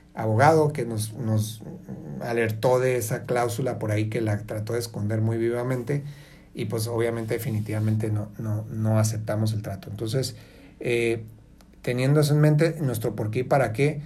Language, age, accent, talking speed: Spanish, 40-59, Mexican, 165 wpm